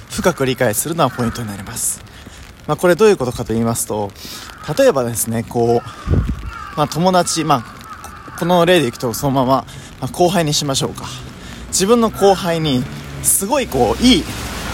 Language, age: Japanese, 20-39